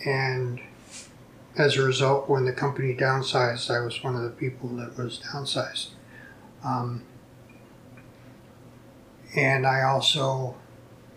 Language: English